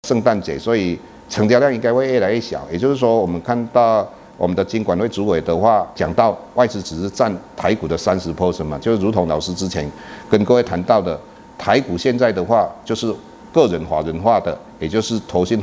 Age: 50-69